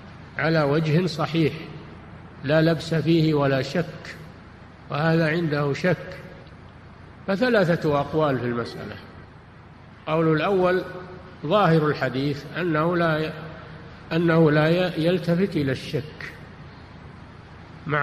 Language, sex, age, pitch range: Arabic, male, 50-69, 140-175 Hz